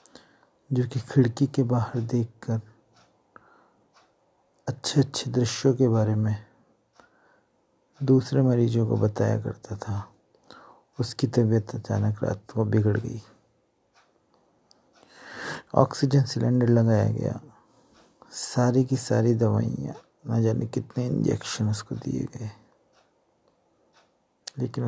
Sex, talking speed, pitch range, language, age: male, 100 wpm, 110-125 Hz, Hindi, 50-69